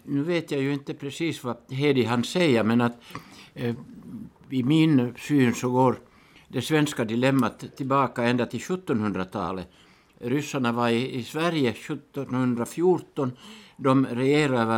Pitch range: 120-145 Hz